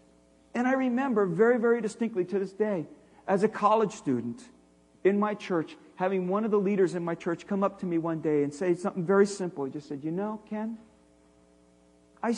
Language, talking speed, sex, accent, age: English, 205 wpm, male, American, 50-69